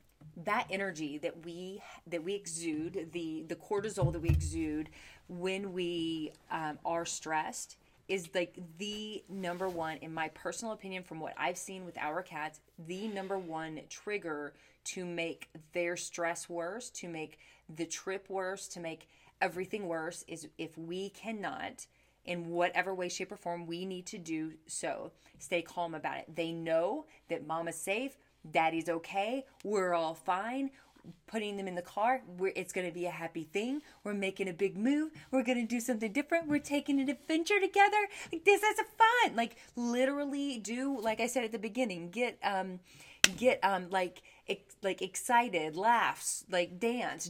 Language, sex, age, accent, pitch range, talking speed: English, female, 30-49, American, 165-215 Hz, 175 wpm